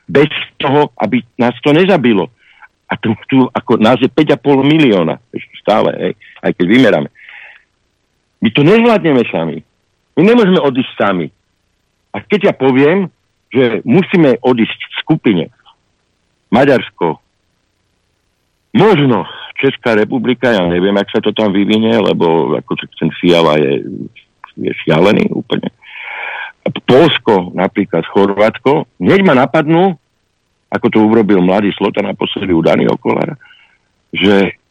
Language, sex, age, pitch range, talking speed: Slovak, male, 60-79, 90-130 Hz, 120 wpm